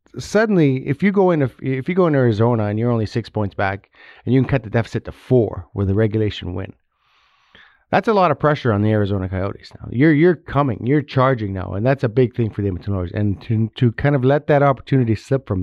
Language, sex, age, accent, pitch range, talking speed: English, male, 30-49, American, 100-120 Hz, 235 wpm